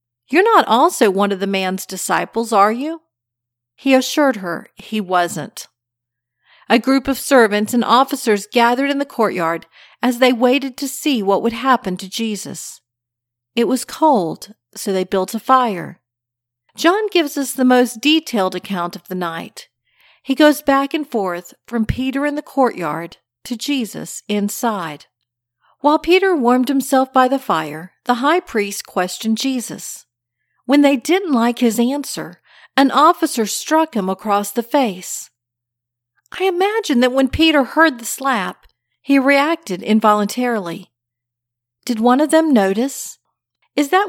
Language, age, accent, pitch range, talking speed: English, 40-59, American, 185-275 Hz, 150 wpm